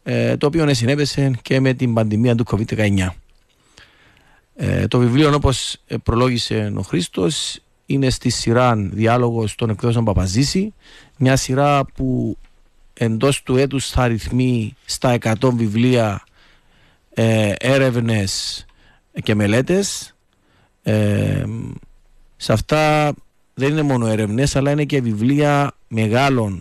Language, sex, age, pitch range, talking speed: Greek, male, 40-59, 110-140 Hz, 115 wpm